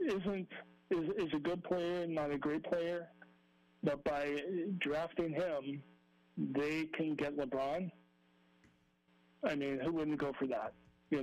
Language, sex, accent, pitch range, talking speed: English, male, American, 135-170 Hz, 140 wpm